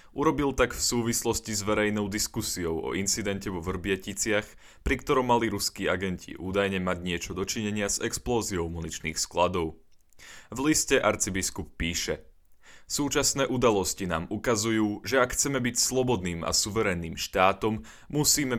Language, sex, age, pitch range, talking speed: Slovak, male, 20-39, 90-115 Hz, 130 wpm